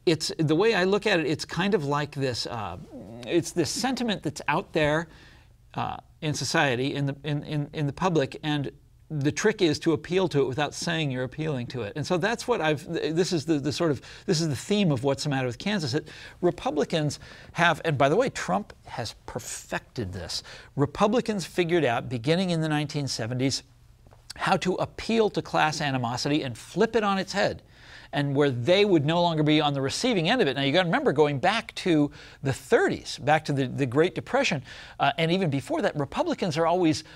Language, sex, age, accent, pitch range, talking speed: English, male, 40-59, American, 140-175 Hz, 210 wpm